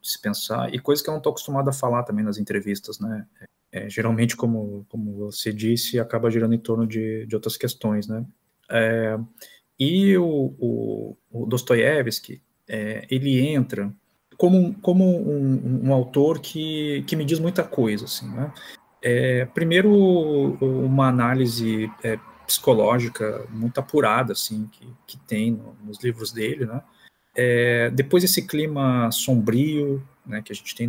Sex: male